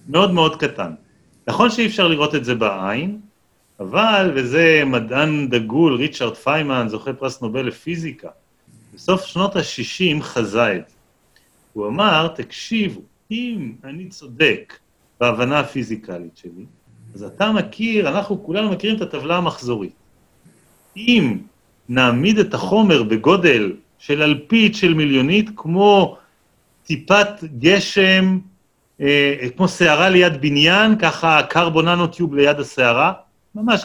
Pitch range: 140-205 Hz